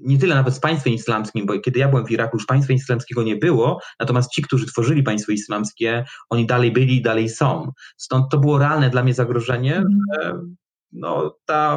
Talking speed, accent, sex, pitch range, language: 190 wpm, native, male, 115-140 Hz, Polish